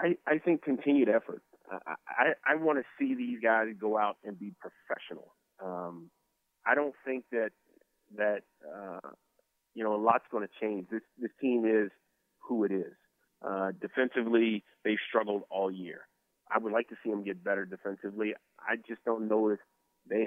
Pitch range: 100-115 Hz